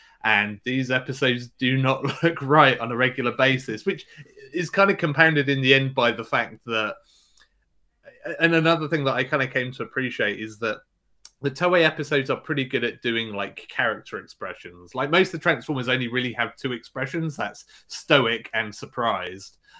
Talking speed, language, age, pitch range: 180 wpm, English, 30-49, 110-140 Hz